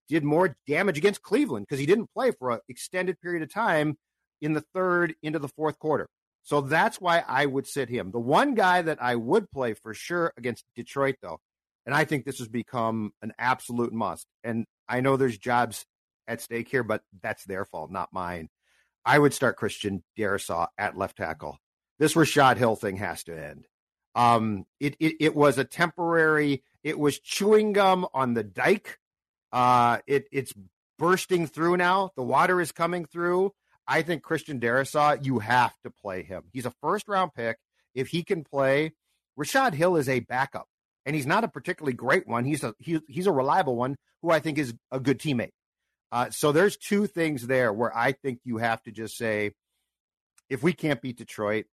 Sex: male